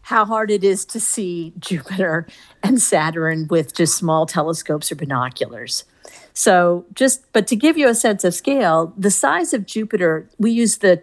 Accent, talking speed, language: American, 175 wpm, English